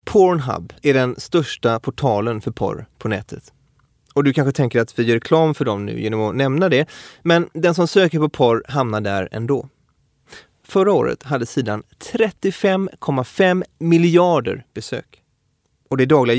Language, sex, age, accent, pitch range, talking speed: English, male, 30-49, Swedish, 120-175 Hz, 155 wpm